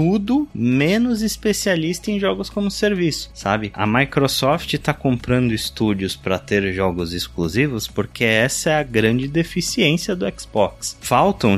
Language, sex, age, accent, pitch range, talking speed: Portuguese, male, 20-39, Brazilian, 95-140 Hz, 135 wpm